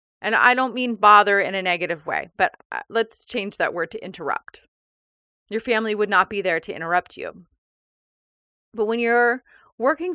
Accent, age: American, 30-49